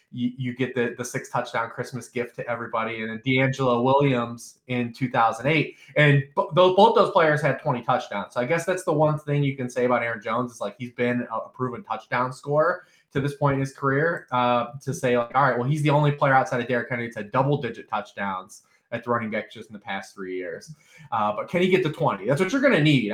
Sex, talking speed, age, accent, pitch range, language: male, 240 wpm, 20-39, American, 120-145 Hz, English